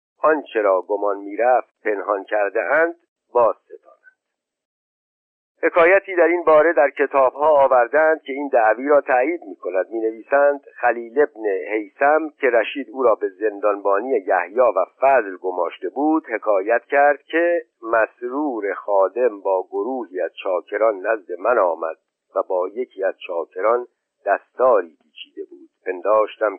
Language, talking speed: Persian, 135 wpm